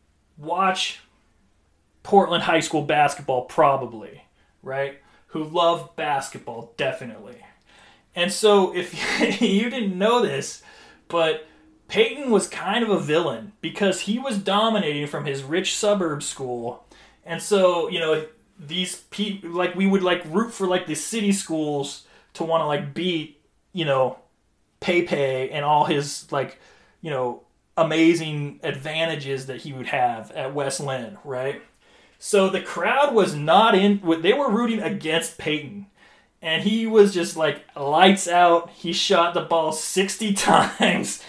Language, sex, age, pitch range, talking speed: English, male, 30-49, 155-205 Hz, 140 wpm